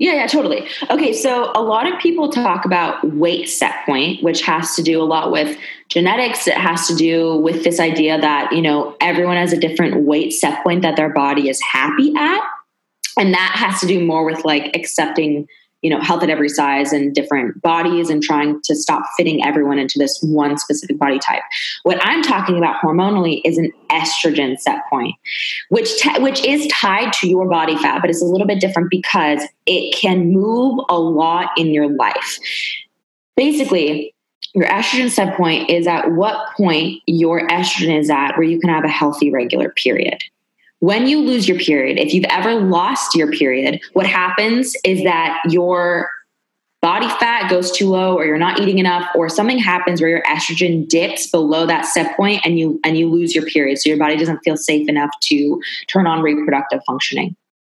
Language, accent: English, American